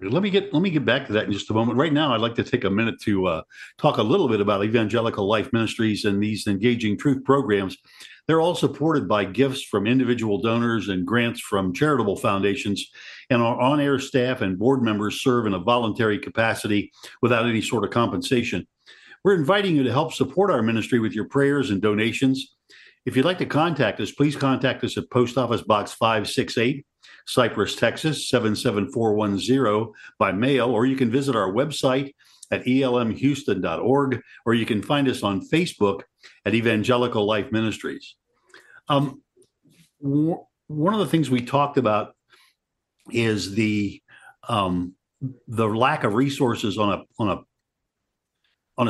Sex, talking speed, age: male, 170 wpm, 50-69